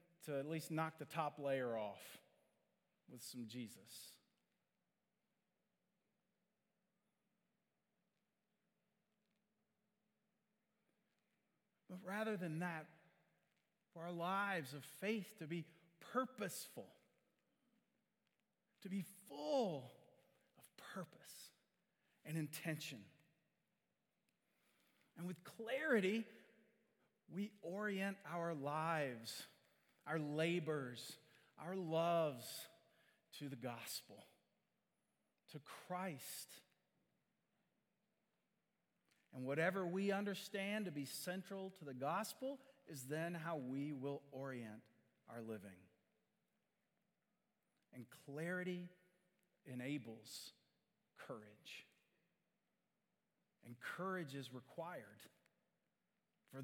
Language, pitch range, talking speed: English, 150-210 Hz, 75 wpm